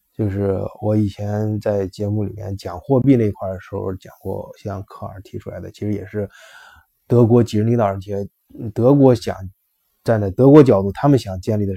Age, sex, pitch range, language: 20-39, male, 100-120 Hz, Chinese